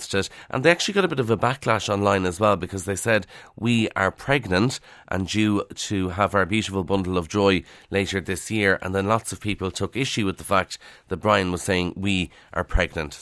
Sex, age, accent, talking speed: male, 30-49, Irish, 220 wpm